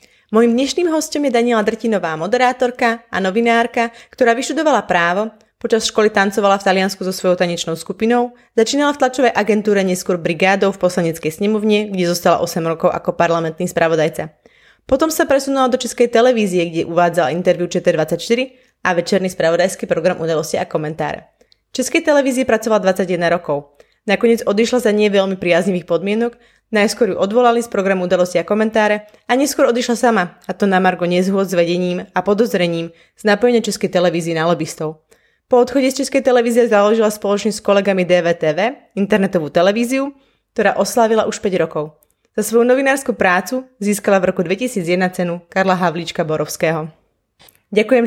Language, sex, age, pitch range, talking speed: Slovak, female, 20-39, 180-235 Hz, 155 wpm